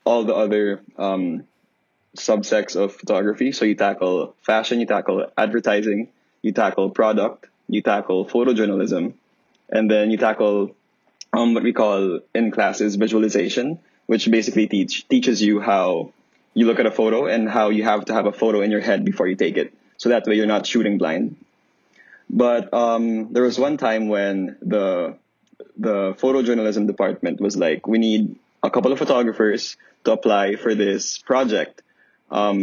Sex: male